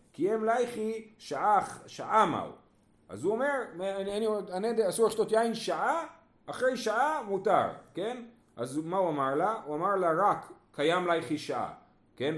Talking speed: 150 wpm